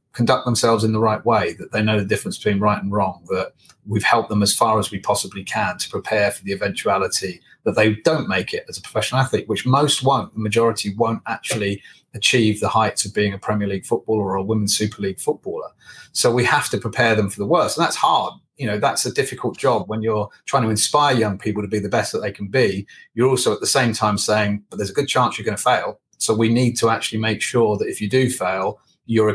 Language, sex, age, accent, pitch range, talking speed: English, male, 30-49, British, 100-115 Hz, 250 wpm